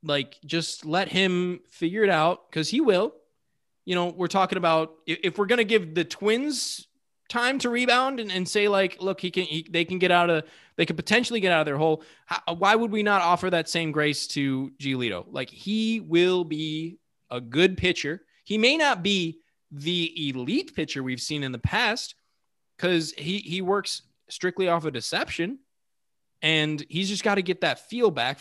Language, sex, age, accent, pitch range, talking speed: English, male, 20-39, American, 150-195 Hz, 200 wpm